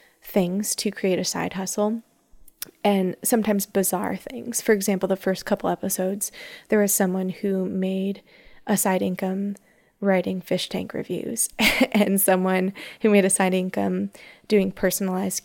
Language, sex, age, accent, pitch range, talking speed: English, female, 20-39, American, 190-215 Hz, 145 wpm